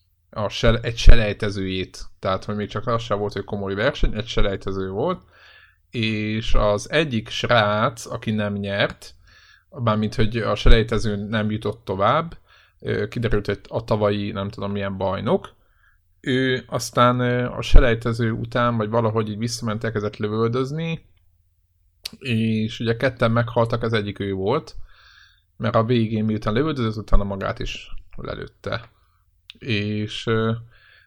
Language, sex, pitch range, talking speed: Hungarian, male, 100-115 Hz, 130 wpm